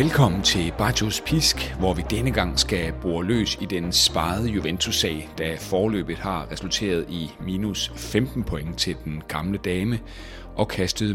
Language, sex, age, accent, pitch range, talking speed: Danish, male, 30-49, native, 85-110 Hz, 155 wpm